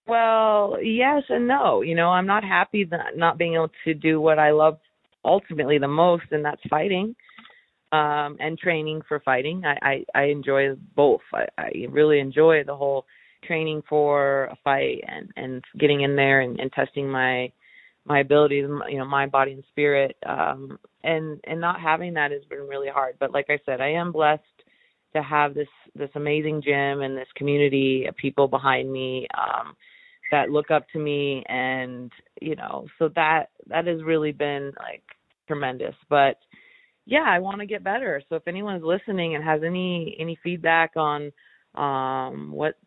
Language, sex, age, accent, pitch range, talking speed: English, female, 30-49, American, 140-165 Hz, 180 wpm